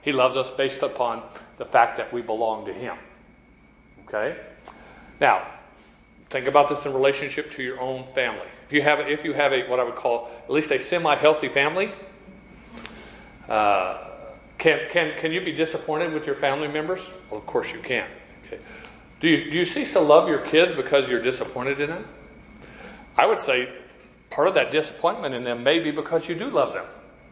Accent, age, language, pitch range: American, 40-59, English, 140-175 Hz